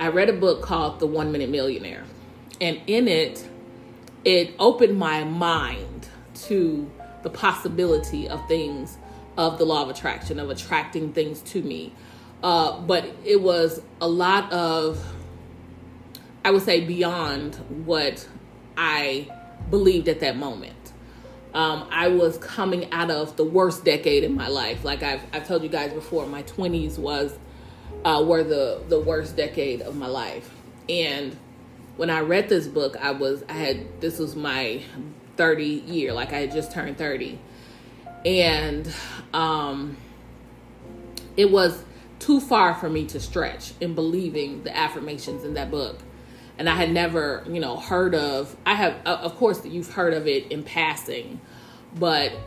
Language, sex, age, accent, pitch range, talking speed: English, female, 30-49, American, 135-175 Hz, 155 wpm